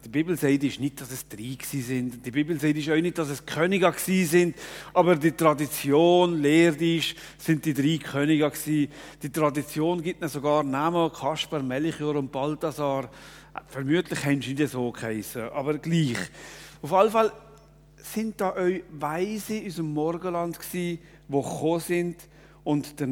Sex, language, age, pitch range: male, German, 40-59, 150-210 Hz